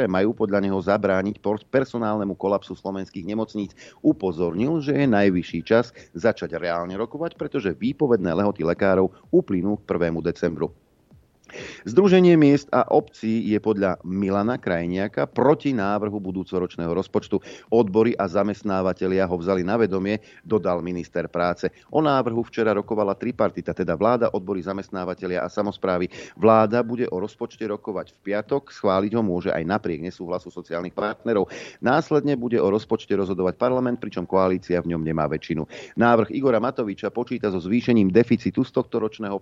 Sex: male